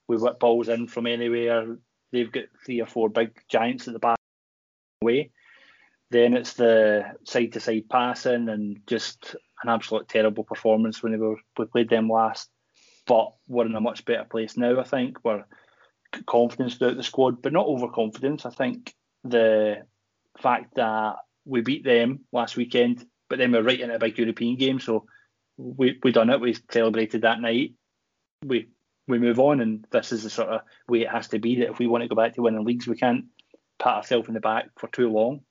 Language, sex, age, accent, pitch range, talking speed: English, male, 20-39, British, 115-130 Hz, 195 wpm